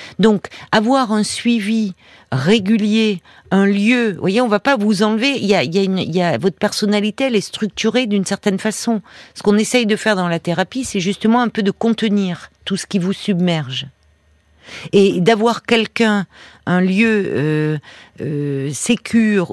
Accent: French